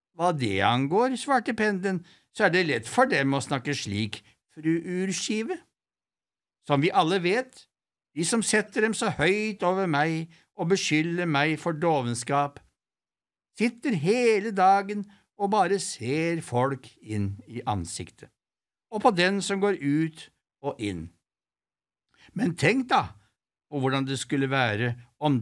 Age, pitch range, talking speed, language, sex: 60-79, 120-200 Hz, 145 wpm, English, male